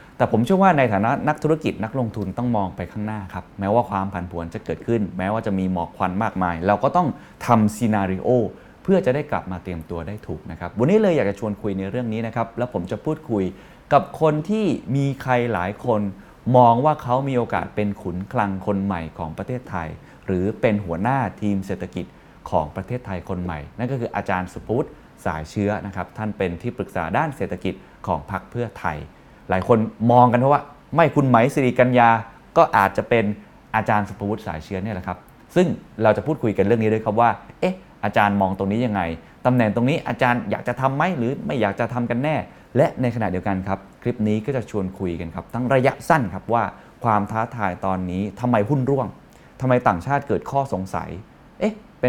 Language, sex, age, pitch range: Thai, male, 20-39, 95-125 Hz